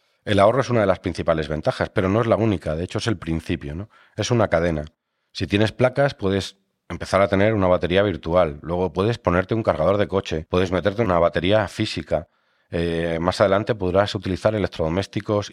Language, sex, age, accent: French, male, 40-59, Spanish